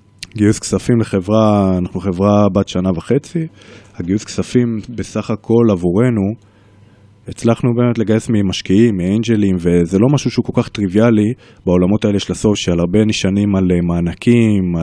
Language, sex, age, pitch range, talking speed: Hebrew, male, 20-39, 95-115 Hz, 135 wpm